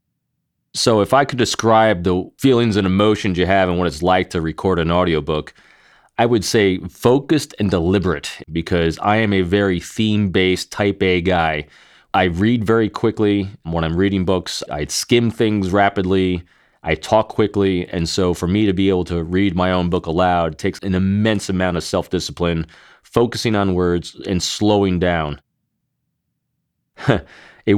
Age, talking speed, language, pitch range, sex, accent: 30-49, 160 wpm, English, 85-105 Hz, male, American